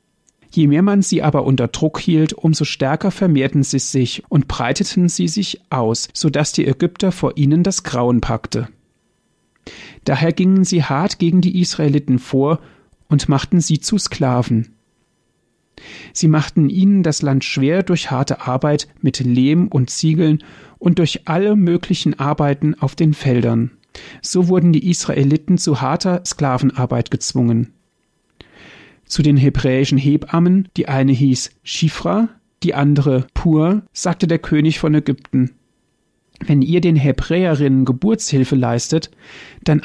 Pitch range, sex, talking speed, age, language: 135-180 Hz, male, 140 wpm, 40-59, German